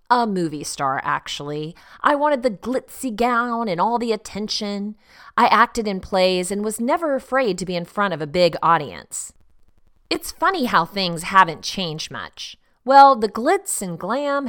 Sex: female